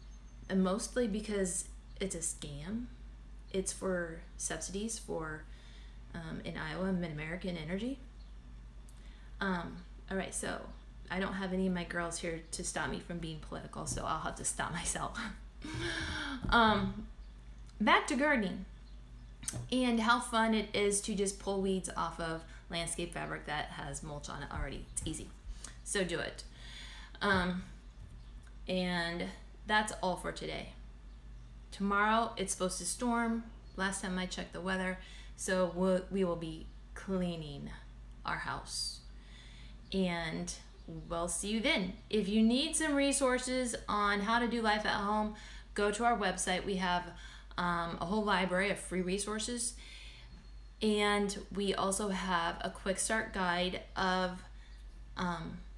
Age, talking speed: 20-39, 140 wpm